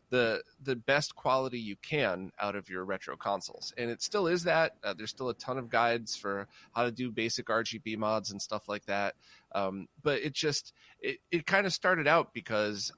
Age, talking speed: 30-49, 210 wpm